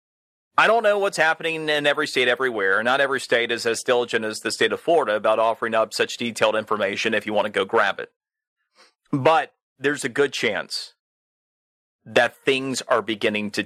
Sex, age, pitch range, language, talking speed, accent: male, 30-49, 120-190 Hz, English, 190 wpm, American